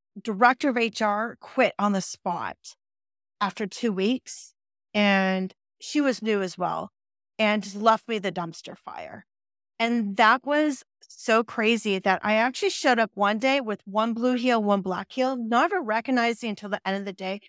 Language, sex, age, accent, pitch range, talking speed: English, female, 30-49, American, 195-250 Hz, 175 wpm